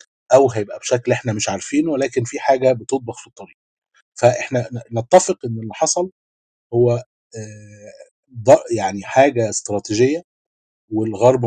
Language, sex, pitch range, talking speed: Arabic, male, 105-130 Hz, 115 wpm